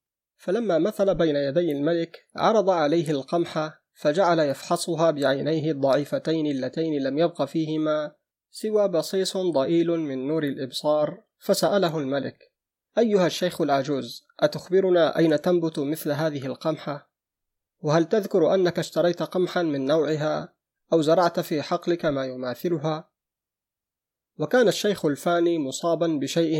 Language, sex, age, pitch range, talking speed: Arabic, male, 30-49, 145-170 Hz, 115 wpm